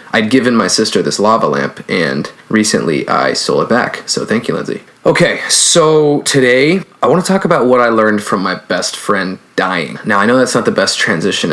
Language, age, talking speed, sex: English, 20-39, 215 wpm, male